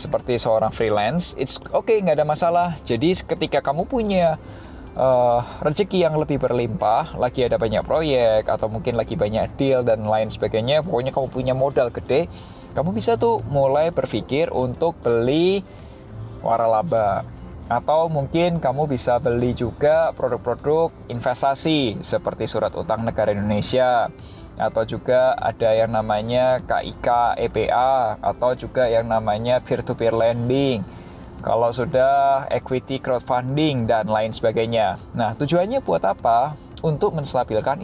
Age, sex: 20-39, male